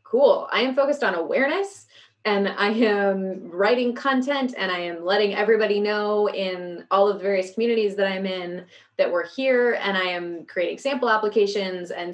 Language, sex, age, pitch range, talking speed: English, female, 20-39, 185-220 Hz, 180 wpm